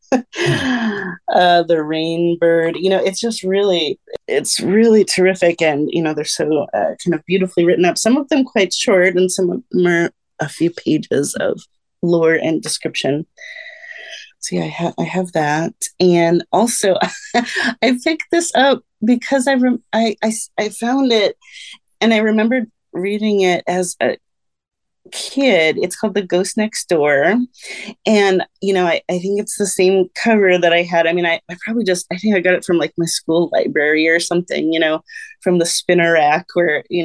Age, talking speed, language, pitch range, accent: 30-49, 185 wpm, English, 170-230 Hz, American